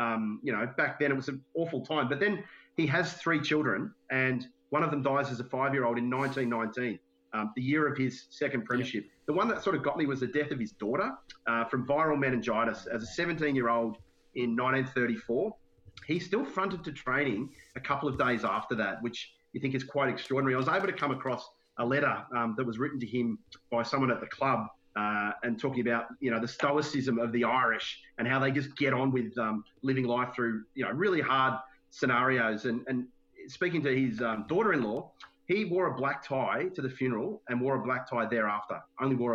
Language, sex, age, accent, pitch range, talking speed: English, male, 30-49, Australian, 115-140 Hz, 220 wpm